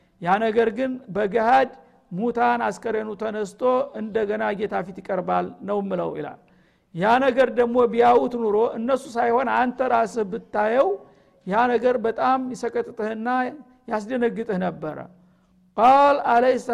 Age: 50-69